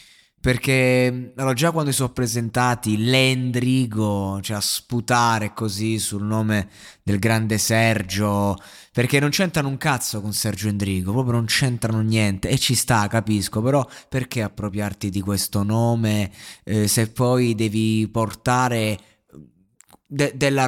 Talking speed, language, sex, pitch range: 130 wpm, Italian, male, 105-125 Hz